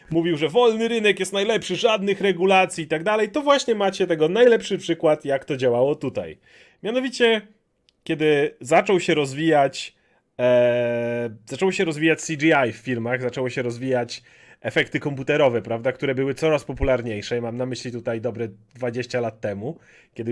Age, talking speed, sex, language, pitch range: 30-49, 155 wpm, male, Polish, 135-185 Hz